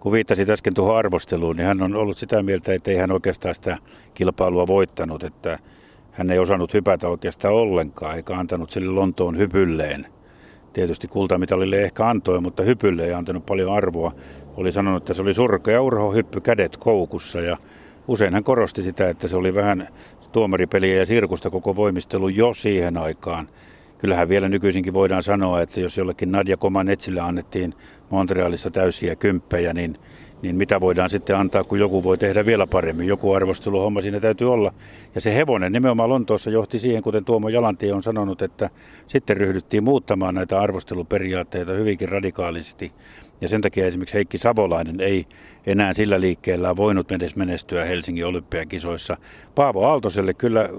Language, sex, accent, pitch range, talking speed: Finnish, male, native, 90-105 Hz, 160 wpm